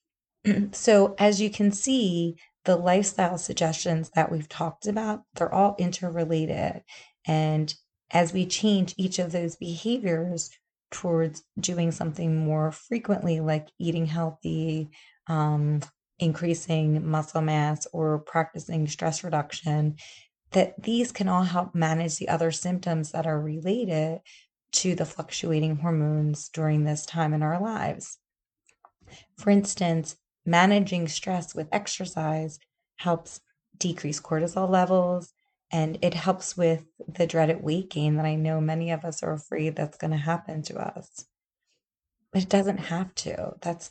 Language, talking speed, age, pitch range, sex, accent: English, 135 wpm, 30-49, 160-185 Hz, female, American